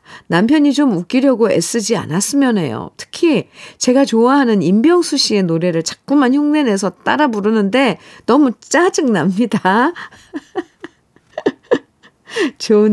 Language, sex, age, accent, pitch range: Korean, female, 50-69, native, 185-270 Hz